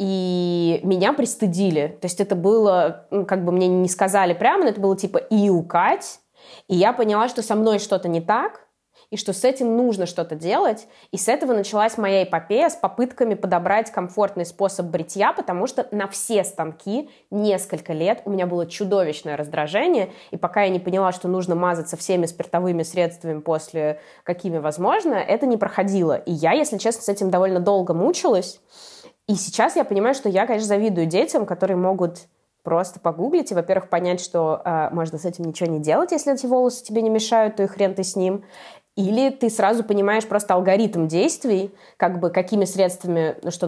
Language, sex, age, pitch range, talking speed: Russian, female, 20-39, 175-210 Hz, 185 wpm